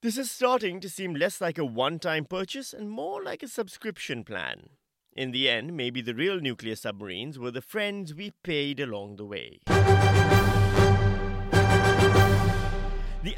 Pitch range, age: 115-170 Hz, 30-49